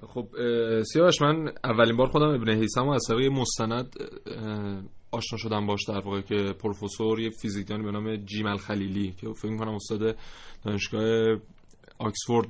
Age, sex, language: 20-39, male, Persian